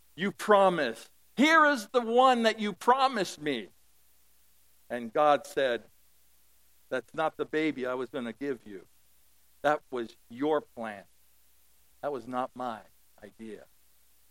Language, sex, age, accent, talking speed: English, male, 60-79, American, 135 wpm